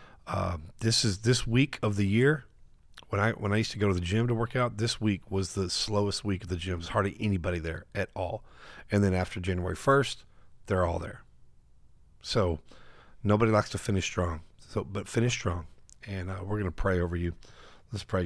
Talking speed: 205 wpm